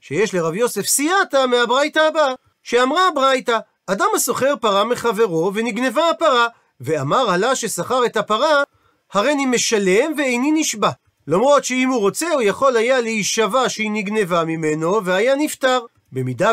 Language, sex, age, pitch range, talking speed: Hebrew, male, 40-59, 185-265 Hz, 135 wpm